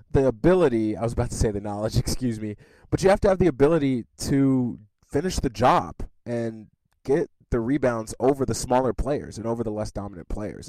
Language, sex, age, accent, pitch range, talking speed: English, male, 20-39, American, 105-135 Hz, 200 wpm